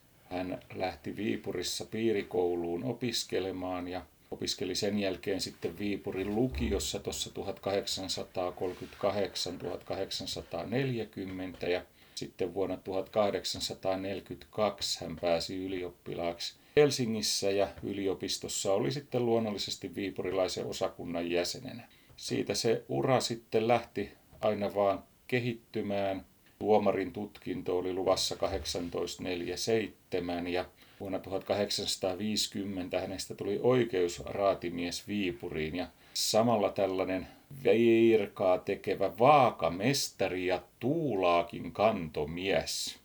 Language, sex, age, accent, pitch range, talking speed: Finnish, male, 40-59, native, 90-115 Hz, 80 wpm